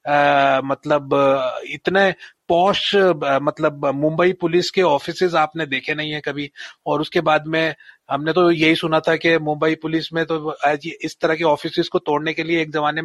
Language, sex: Hindi, male